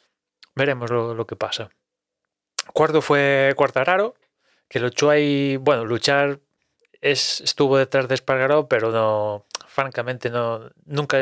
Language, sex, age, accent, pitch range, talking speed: Spanish, male, 20-39, Spanish, 110-135 Hz, 125 wpm